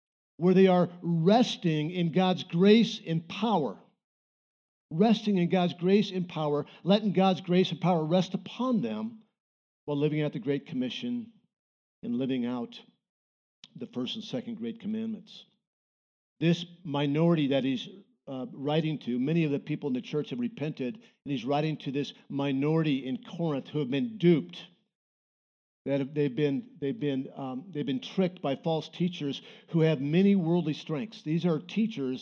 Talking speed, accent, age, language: 160 wpm, American, 60-79, English